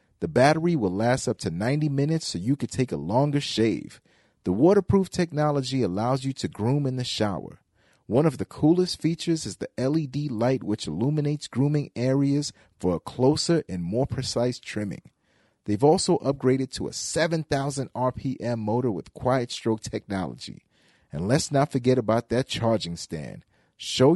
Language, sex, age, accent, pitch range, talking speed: English, male, 40-59, American, 115-145 Hz, 165 wpm